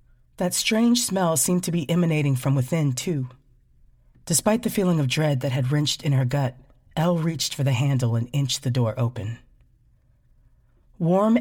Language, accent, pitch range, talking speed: English, American, 125-150 Hz, 170 wpm